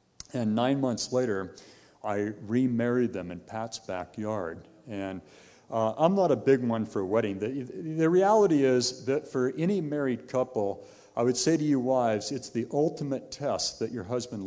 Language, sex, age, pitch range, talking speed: English, male, 50-69, 105-130 Hz, 175 wpm